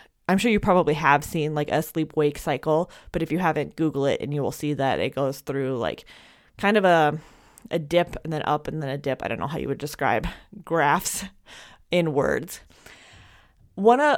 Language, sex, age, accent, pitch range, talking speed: English, female, 20-39, American, 150-185 Hz, 205 wpm